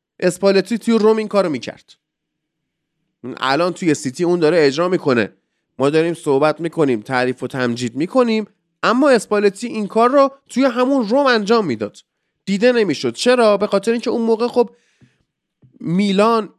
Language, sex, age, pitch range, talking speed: Persian, male, 30-49, 135-210 Hz, 150 wpm